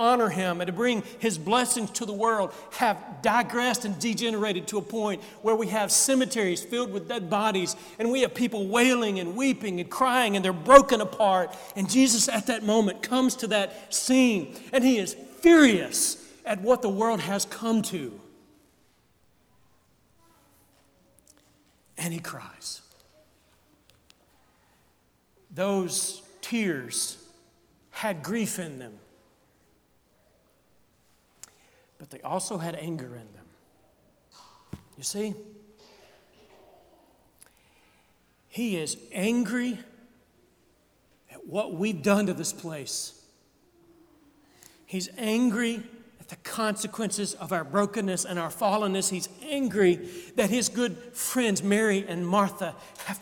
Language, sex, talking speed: English, male, 120 wpm